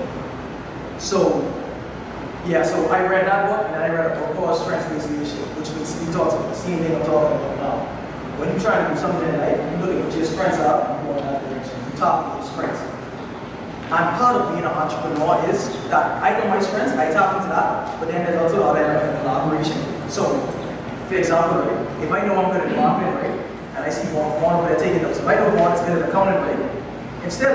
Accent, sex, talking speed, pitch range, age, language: American, male, 230 wpm, 150-185 Hz, 20-39, English